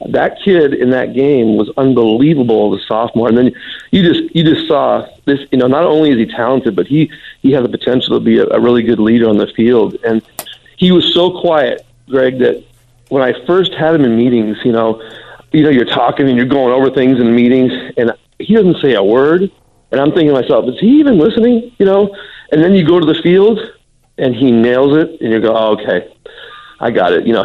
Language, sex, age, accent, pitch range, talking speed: English, male, 40-59, American, 115-150 Hz, 230 wpm